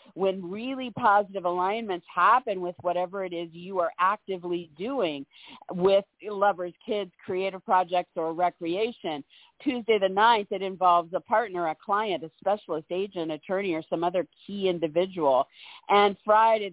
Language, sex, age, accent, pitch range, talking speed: English, female, 50-69, American, 175-220 Hz, 145 wpm